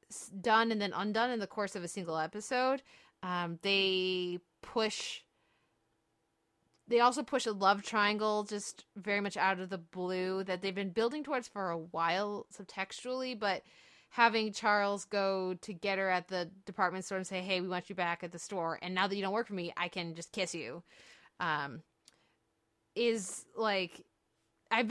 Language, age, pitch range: English, 20-39, 180-225 Hz